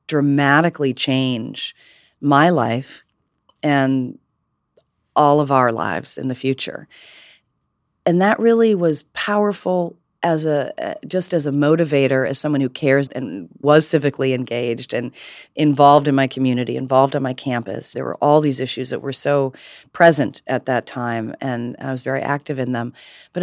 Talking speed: 155 wpm